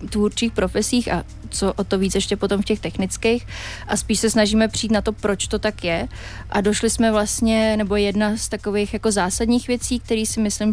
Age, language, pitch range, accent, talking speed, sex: 20-39, Czech, 185-210 Hz, native, 205 wpm, female